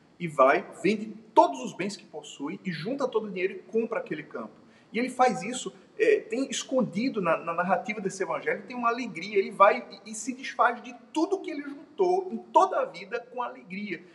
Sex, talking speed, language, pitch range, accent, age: male, 210 wpm, Portuguese, 180-255 Hz, Brazilian, 40-59